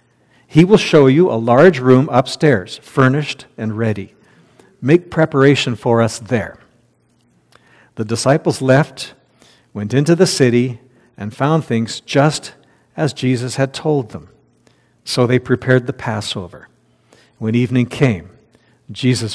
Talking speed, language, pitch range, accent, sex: 125 wpm, English, 120-160 Hz, American, male